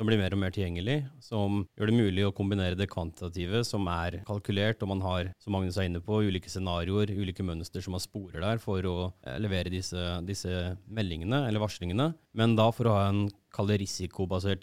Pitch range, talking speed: 90-110 Hz, 195 wpm